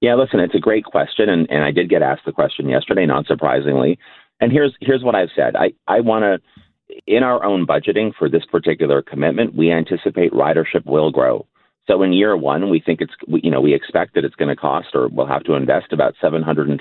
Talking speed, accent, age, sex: 235 wpm, American, 40-59, male